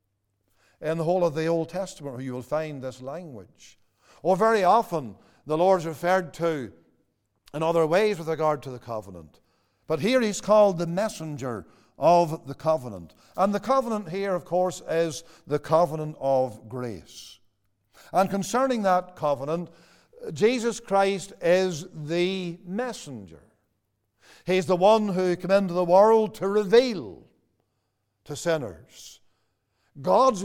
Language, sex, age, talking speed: English, male, 60-79, 140 wpm